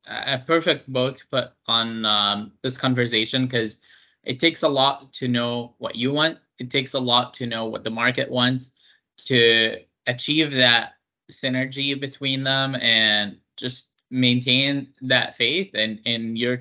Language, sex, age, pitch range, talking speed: English, male, 20-39, 110-130 Hz, 160 wpm